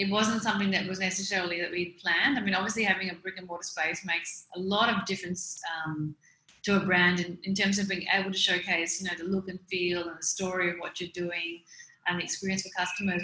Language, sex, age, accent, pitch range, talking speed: English, female, 30-49, Australian, 175-195 Hz, 230 wpm